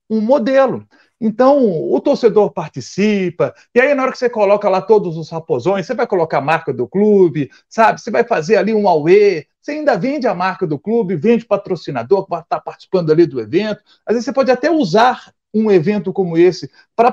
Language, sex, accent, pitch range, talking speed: Portuguese, male, Brazilian, 180-245 Hz, 205 wpm